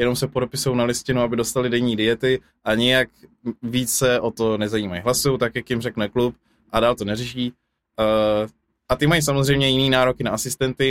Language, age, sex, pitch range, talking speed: Czech, 20-39, male, 115-140 Hz, 180 wpm